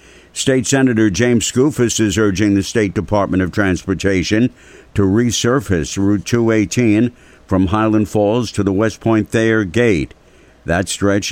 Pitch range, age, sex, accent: 90-105 Hz, 60-79, male, American